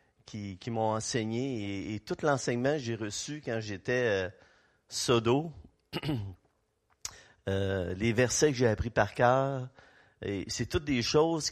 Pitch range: 105-135 Hz